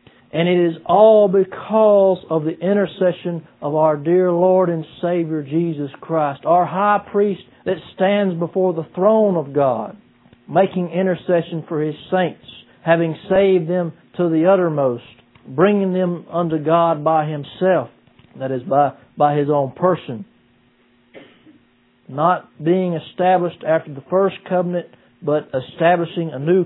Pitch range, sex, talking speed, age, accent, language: 140-180 Hz, male, 135 wpm, 60-79, American, English